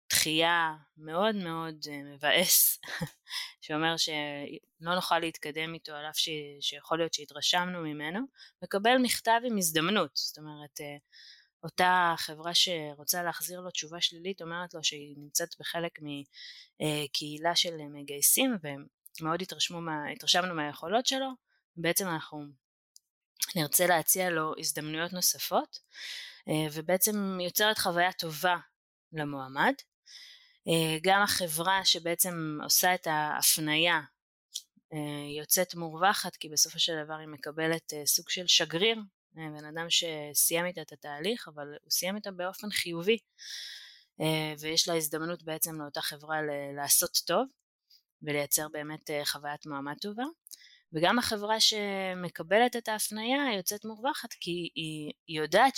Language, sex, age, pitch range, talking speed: Hebrew, female, 20-39, 150-185 Hz, 115 wpm